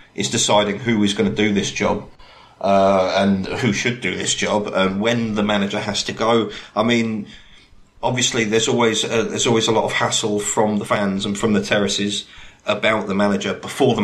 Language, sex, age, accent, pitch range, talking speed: English, male, 30-49, British, 100-105 Hz, 200 wpm